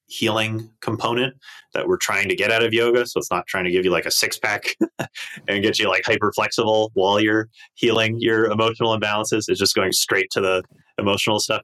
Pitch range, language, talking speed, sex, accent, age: 95-120 Hz, English, 210 wpm, male, American, 30-49